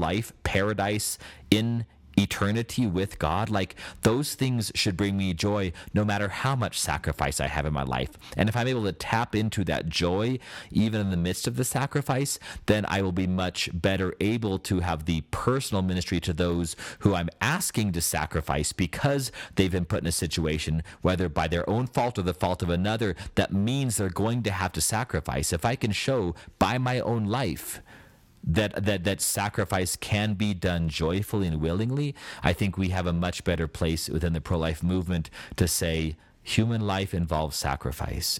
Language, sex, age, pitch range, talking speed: English, male, 40-59, 85-105 Hz, 185 wpm